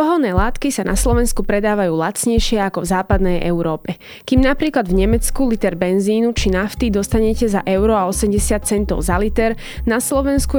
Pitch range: 195-240 Hz